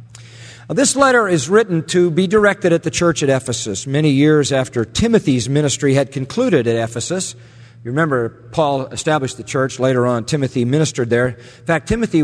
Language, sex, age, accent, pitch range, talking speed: English, male, 50-69, American, 125-170 Hz, 170 wpm